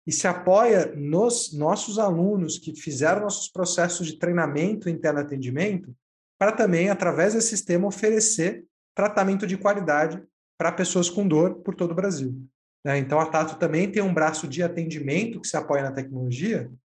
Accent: Brazilian